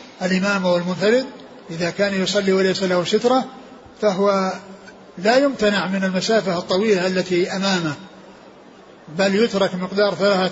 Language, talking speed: Arabic, 115 wpm